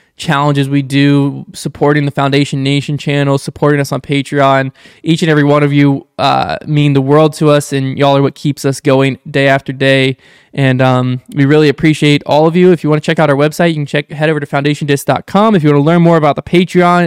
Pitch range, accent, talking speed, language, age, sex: 135-155 Hz, American, 230 wpm, English, 20-39, male